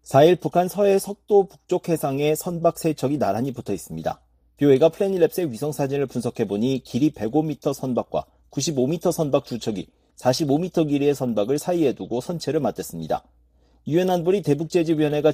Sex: male